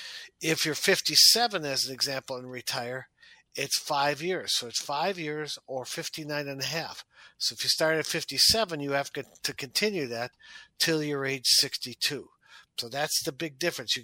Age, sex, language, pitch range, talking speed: 50-69, male, English, 135-170 Hz, 175 wpm